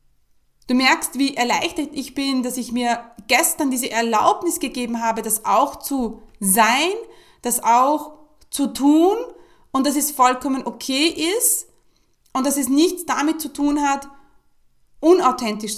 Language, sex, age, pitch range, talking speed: German, female, 30-49, 225-290 Hz, 140 wpm